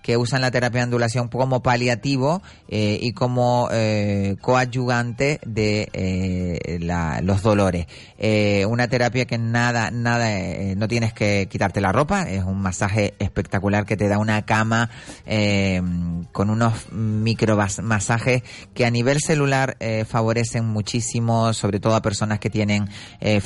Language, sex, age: Spanish, male, 30-49